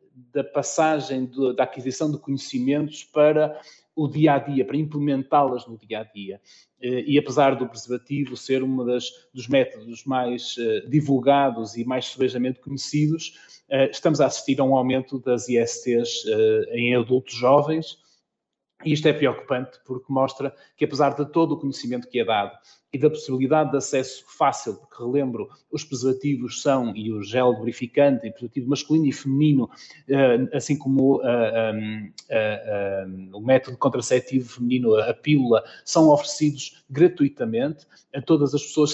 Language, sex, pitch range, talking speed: Portuguese, male, 125-145 Hz, 140 wpm